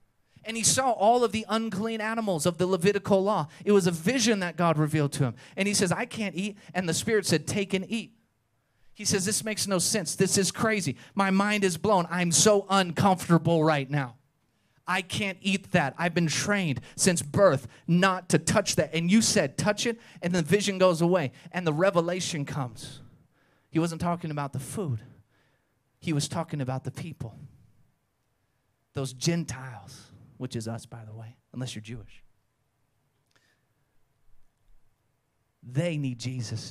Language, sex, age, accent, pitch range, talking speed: English, male, 30-49, American, 130-180 Hz, 170 wpm